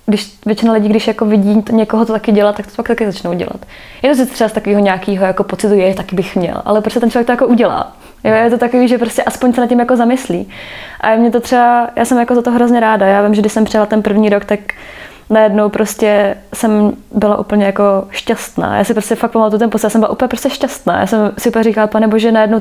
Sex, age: female, 20-39